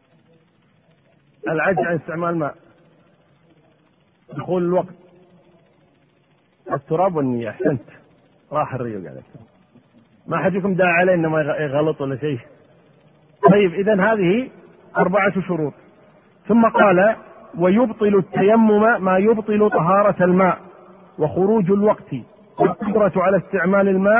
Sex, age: male, 50-69